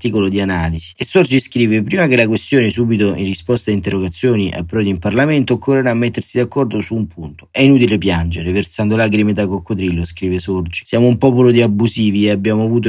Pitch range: 105-125 Hz